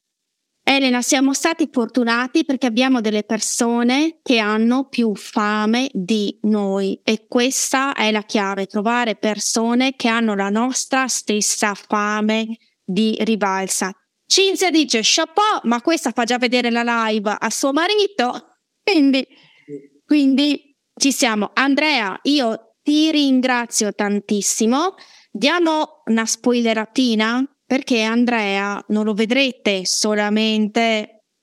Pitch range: 220-270 Hz